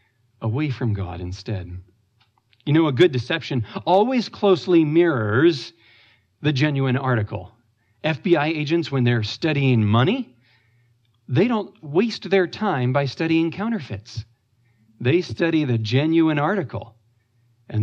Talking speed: 120 wpm